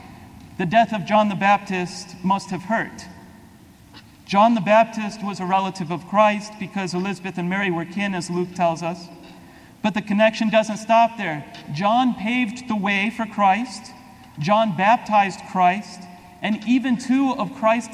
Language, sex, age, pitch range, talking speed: English, male, 40-59, 180-225 Hz, 155 wpm